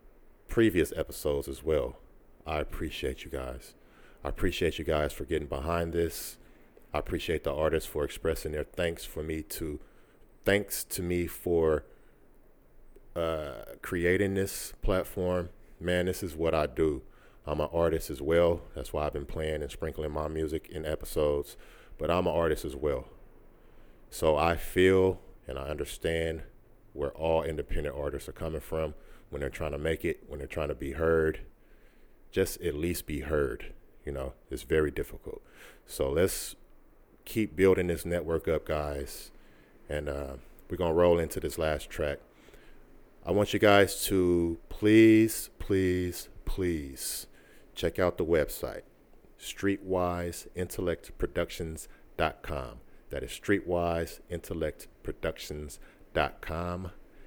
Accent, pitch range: American, 75-90 Hz